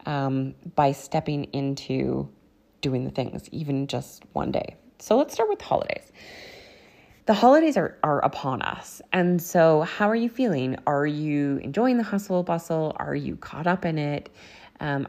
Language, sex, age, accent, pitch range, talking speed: English, female, 20-39, American, 140-180 Hz, 165 wpm